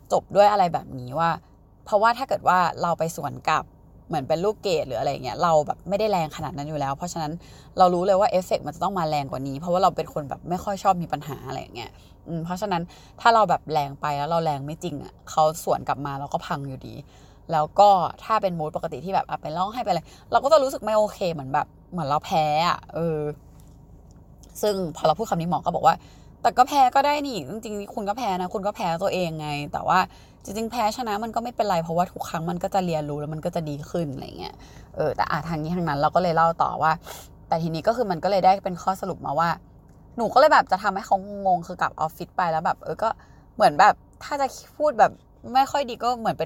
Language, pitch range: Thai, 155-200 Hz